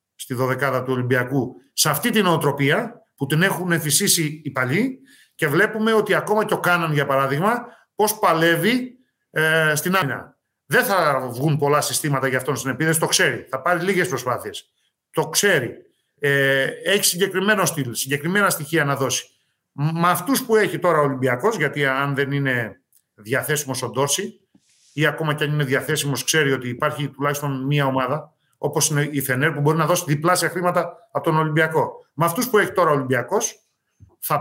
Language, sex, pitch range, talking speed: Greek, male, 140-190 Hz, 175 wpm